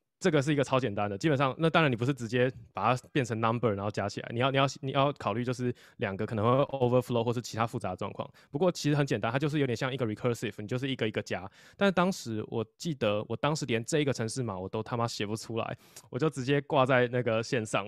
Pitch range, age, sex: 115-145 Hz, 20-39, male